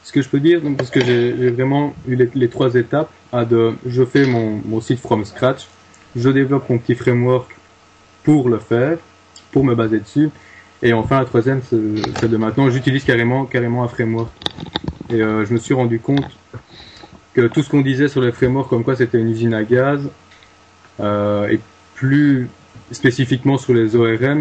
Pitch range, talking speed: 110-130 Hz, 190 wpm